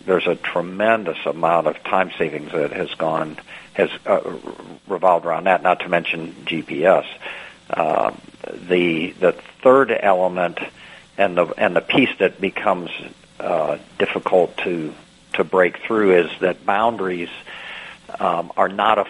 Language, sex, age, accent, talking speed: English, male, 60-79, American, 140 wpm